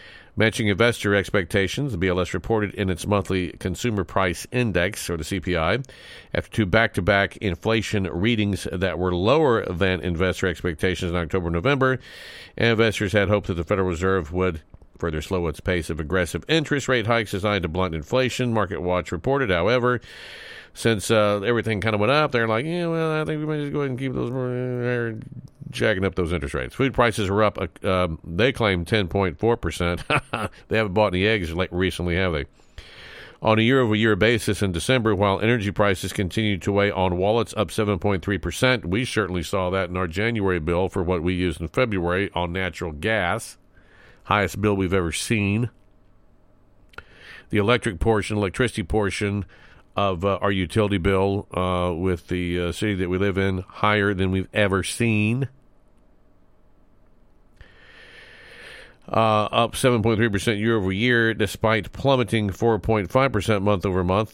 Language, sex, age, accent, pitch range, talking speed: English, male, 50-69, American, 95-110 Hz, 160 wpm